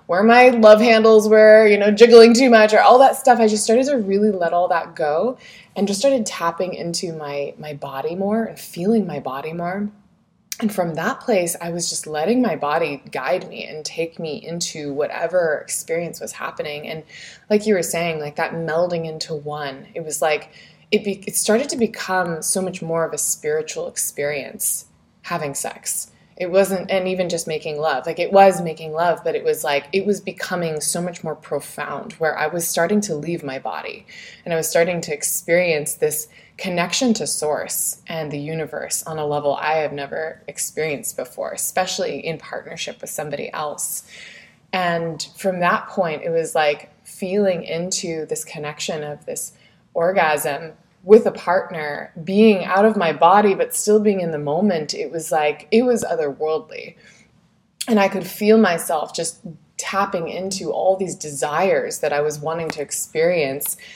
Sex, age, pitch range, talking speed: female, 20-39, 160-215 Hz, 180 wpm